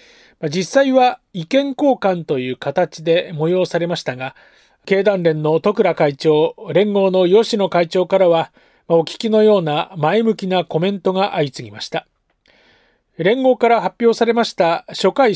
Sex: male